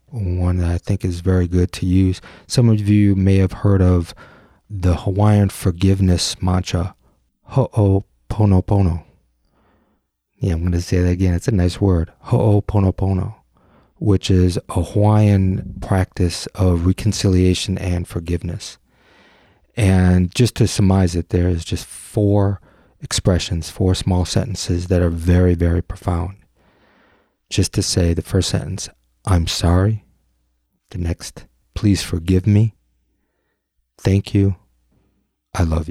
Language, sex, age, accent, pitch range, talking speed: English, male, 30-49, American, 90-100 Hz, 125 wpm